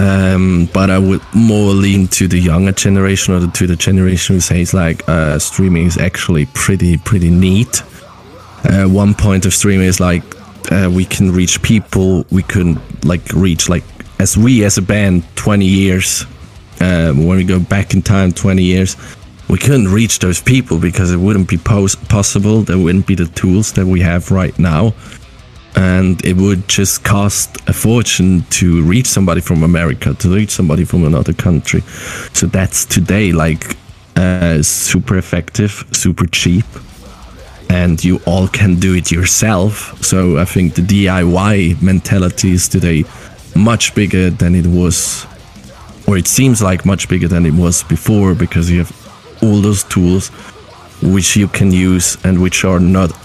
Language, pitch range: Polish, 90-100 Hz